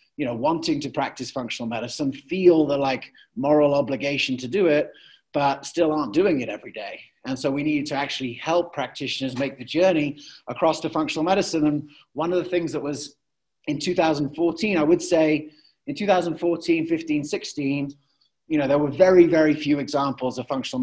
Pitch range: 130-165 Hz